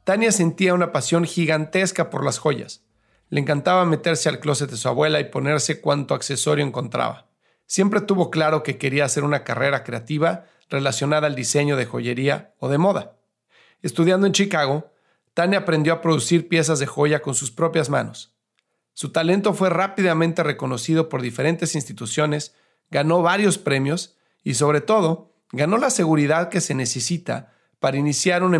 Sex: male